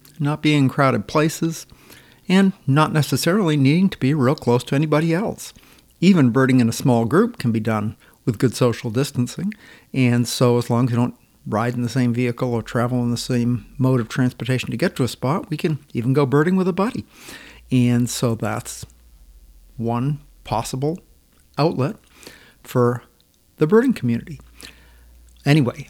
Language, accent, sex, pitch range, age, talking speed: English, American, male, 120-150 Hz, 50-69, 170 wpm